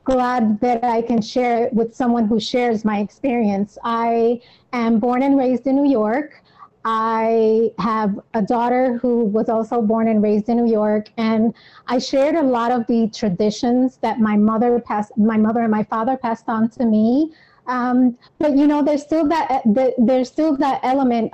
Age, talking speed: 20-39, 185 wpm